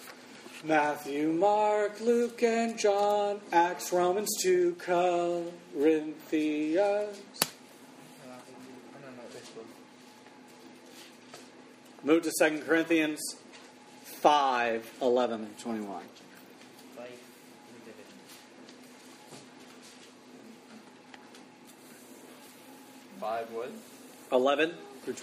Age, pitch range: 40-59, 150-190 Hz